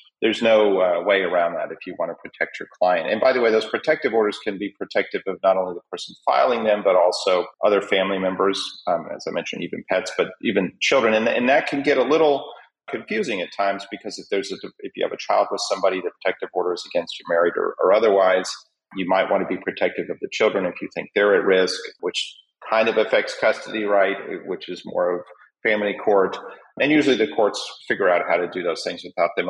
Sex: male